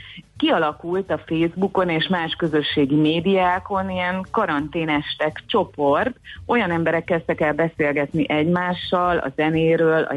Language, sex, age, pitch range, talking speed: Hungarian, female, 30-49, 140-170 Hz, 110 wpm